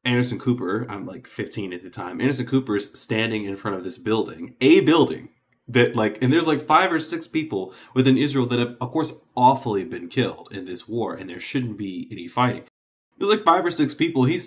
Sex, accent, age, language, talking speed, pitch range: male, American, 20-39, English, 220 wpm, 115-145 Hz